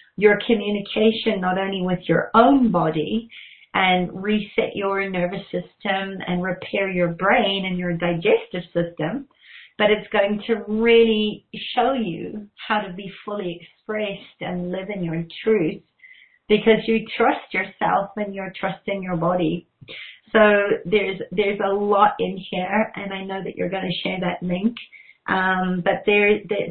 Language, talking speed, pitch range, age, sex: English, 150 wpm, 185-225 Hz, 40-59, female